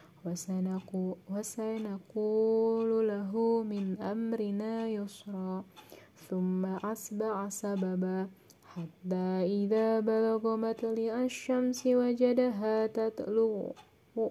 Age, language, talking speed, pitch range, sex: 20-39, Indonesian, 65 wpm, 190-225 Hz, female